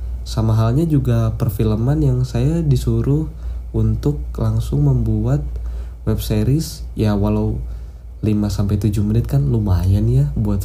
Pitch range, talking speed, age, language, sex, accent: 100-120 Hz, 105 wpm, 20-39, Indonesian, male, native